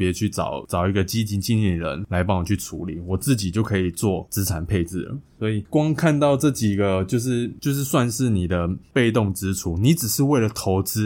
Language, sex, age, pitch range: Chinese, male, 20-39, 95-115 Hz